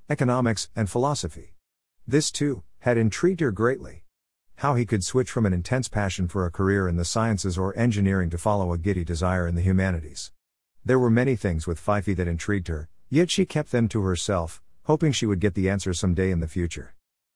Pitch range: 85-115 Hz